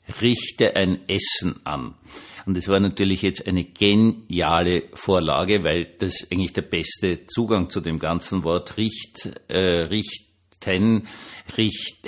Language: German